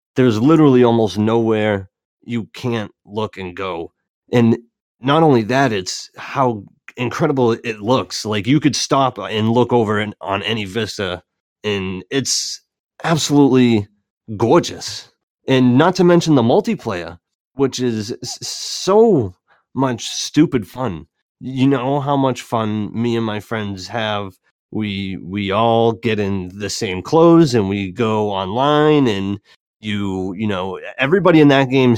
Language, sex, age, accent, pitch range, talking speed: English, male, 30-49, American, 100-125 Hz, 140 wpm